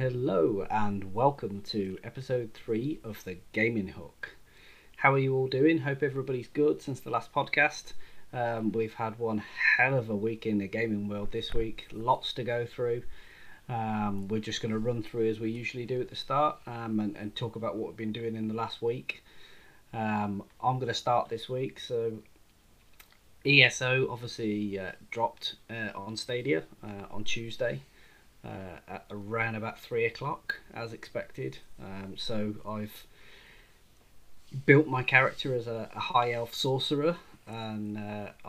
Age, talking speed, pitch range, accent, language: 30-49, 165 wpm, 105-120 Hz, British, English